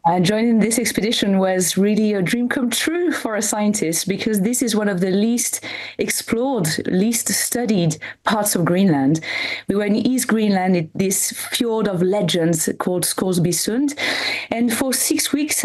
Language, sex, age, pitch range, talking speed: English, female, 30-49, 190-245 Hz, 160 wpm